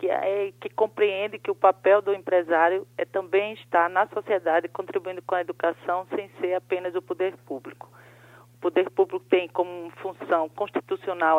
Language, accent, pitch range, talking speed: Portuguese, Brazilian, 165-200 Hz, 160 wpm